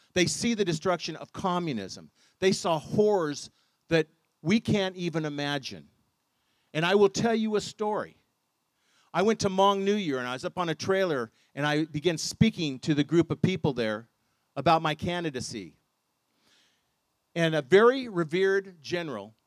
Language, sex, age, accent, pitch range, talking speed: English, male, 50-69, American, 145-190 Hz, 160 wpm